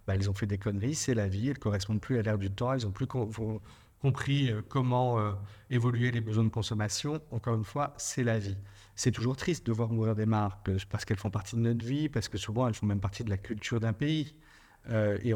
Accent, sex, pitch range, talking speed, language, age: French, male, 110-130 Hz, 260 wpm, French, 50-69